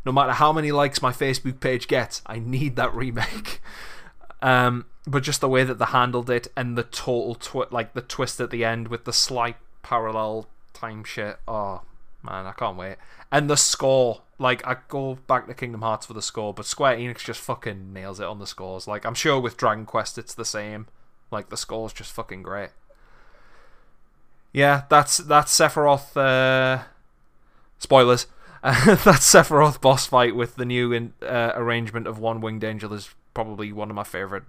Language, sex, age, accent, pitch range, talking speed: English, male, 20-39, British, 110-130 Hz, 190 wpm